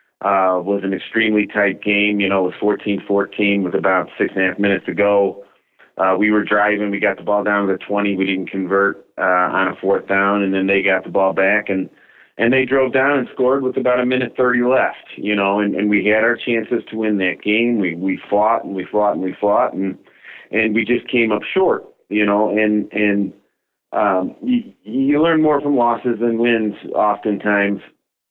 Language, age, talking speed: English, 30-49, 220 wpm